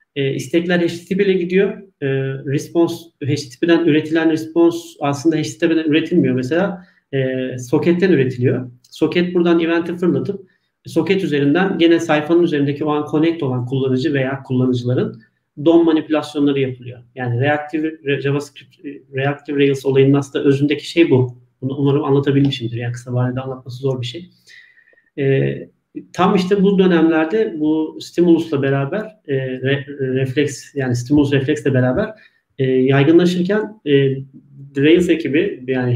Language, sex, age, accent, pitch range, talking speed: Turkish, male, 40-59, native, 130-165 Hz, 130 wpm